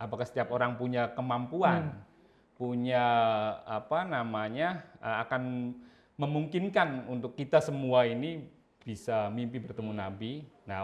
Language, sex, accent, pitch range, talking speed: Indonesian, male, native, 115-150 Hz, 105 wpm